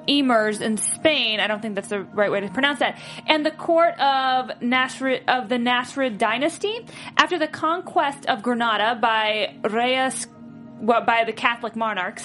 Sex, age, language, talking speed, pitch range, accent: female, 30-49, English, 160 wpm, 230-290 Hz, American